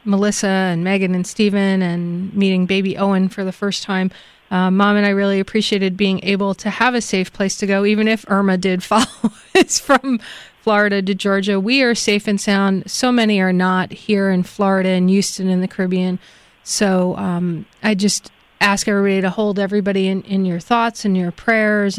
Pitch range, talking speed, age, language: 185-215 Hz, 195 wpm, 30-49, English